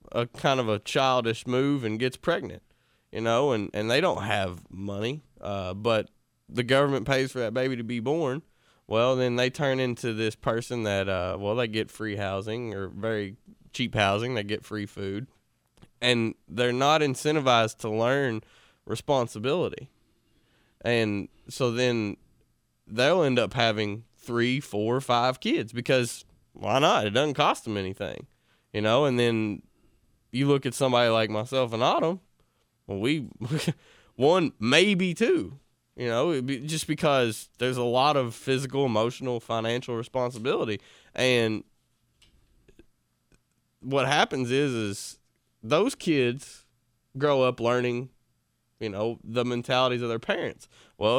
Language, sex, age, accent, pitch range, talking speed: English, male, 20-39, American, 110-130 Hz, 145 wpm